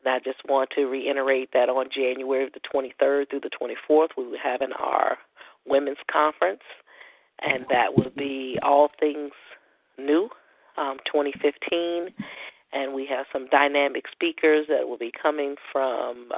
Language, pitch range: English, 135-155 Hz